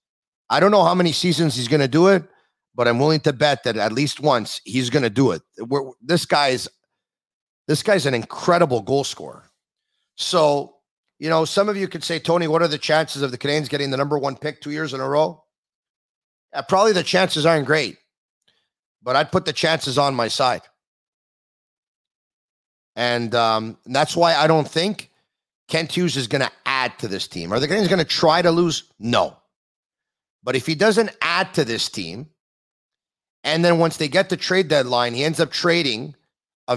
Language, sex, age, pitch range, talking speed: English, male, 40-59, 135-170 Hz, 195 wpm